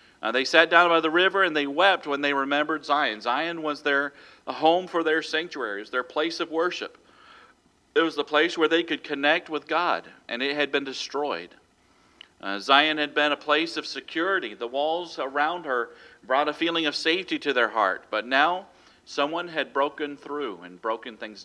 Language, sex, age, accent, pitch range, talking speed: English, male, 40-59, American, 135-160 Hz, 195 wpm